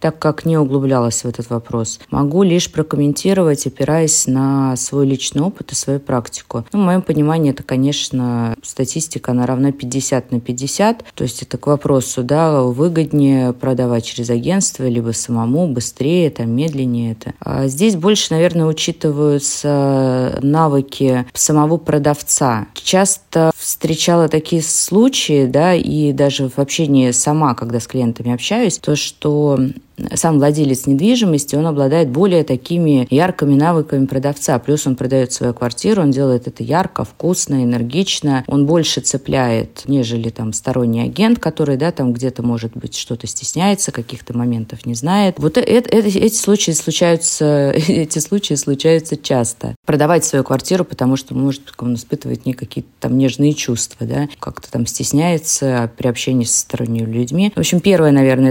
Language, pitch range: Russian, 125-160 Hz